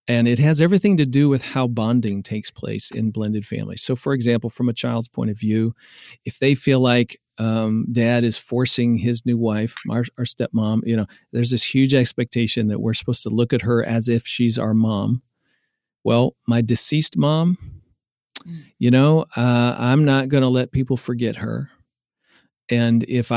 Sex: male